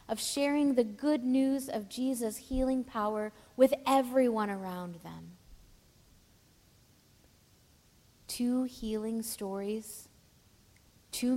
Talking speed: 90 wpm